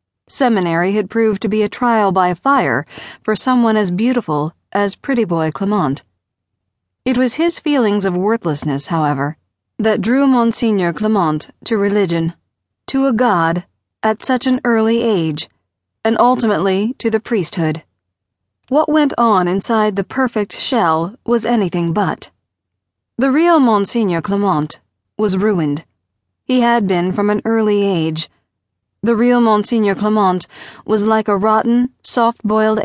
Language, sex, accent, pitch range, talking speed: English, female, American, 165-225 Hz, 135 wpm